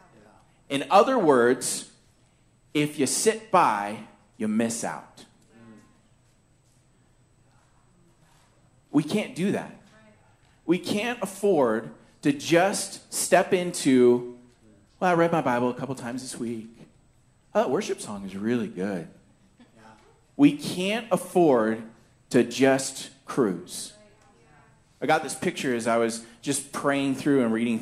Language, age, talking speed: English, 40-59, 120 wpm